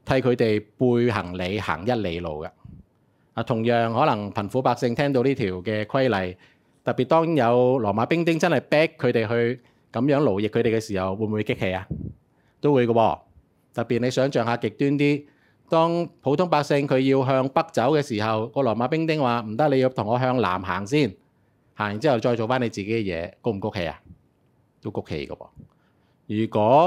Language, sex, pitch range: Chinese, male, 100-135 Hz